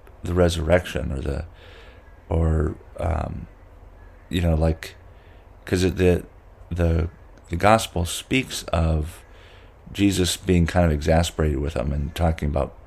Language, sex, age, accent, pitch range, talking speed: English, male, 40-59, American, 80-95 Hz, 120 wpm